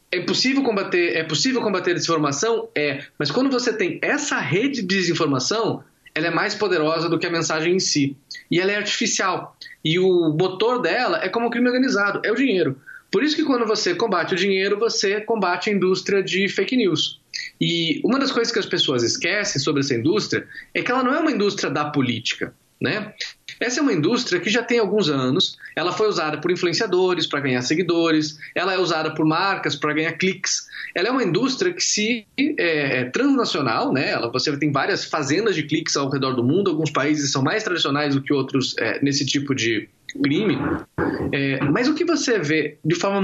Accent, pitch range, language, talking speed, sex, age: Brazilian, 150-225 Hz, Portuguese, 200 wpm, male, 20-39